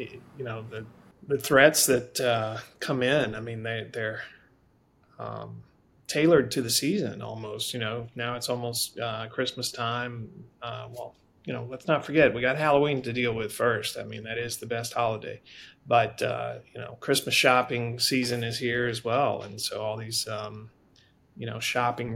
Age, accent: 30-49, American